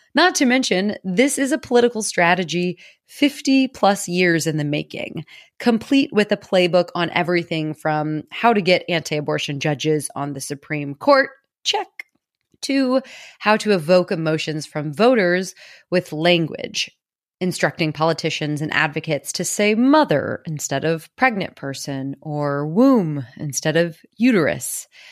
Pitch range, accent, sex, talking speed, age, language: 150-215 Hz, American, female, 130 wpm, 30-49, English